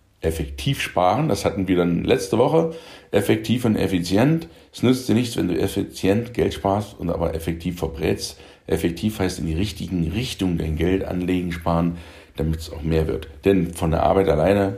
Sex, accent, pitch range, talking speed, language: male, German, 80-95 Hz, 180 wpm, German